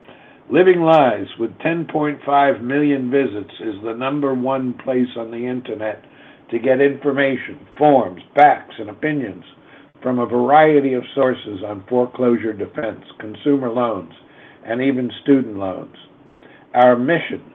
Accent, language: American, English